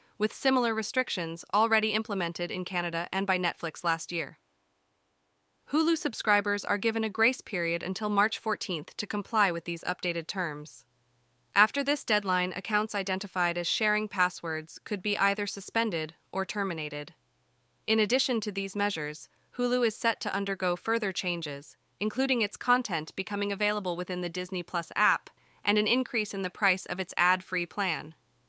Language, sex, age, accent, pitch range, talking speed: English, female, 20-39, American, 165-215 Hz, 155 wpm